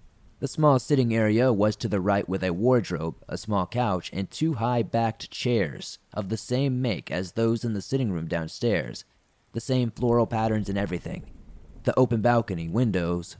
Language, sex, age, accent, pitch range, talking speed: English, male, 30-49, American, 95-120 Hz, 175 wpm